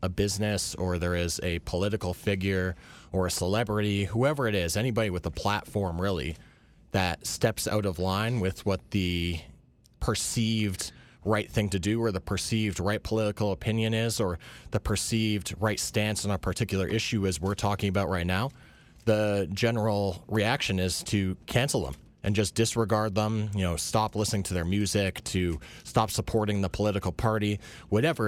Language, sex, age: English, male, 30-49